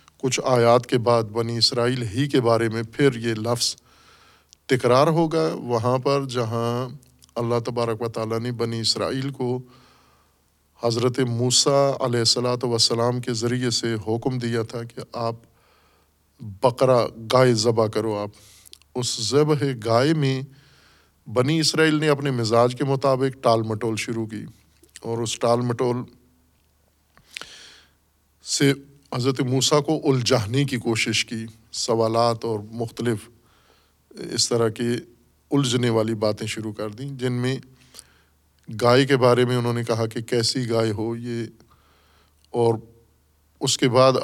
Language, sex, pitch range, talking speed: Urdu, male, 110-130 Hz, 135 wpm